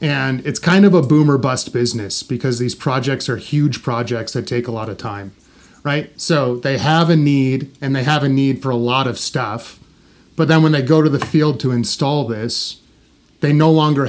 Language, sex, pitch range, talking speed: English, male, 125-150 Hz, 215 wpm